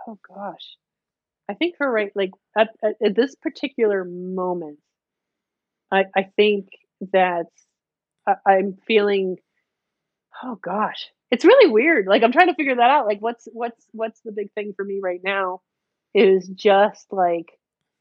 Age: 30-49